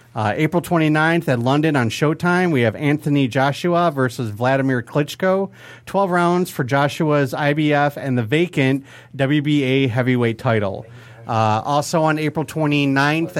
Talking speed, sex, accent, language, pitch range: 135 wpm, male, American, English, 120-155 Hz